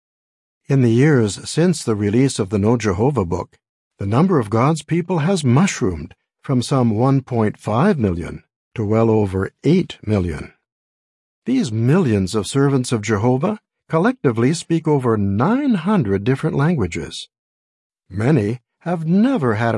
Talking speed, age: 130 wpm, 60-79